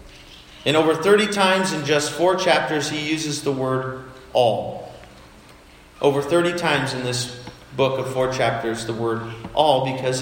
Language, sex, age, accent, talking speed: English, male, 40-59, American, 155 wpm